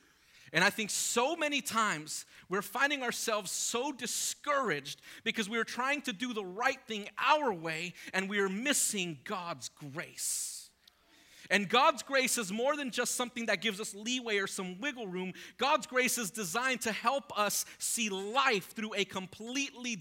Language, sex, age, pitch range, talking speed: English, male, 40-59, 200-265 Hz, 160 wpm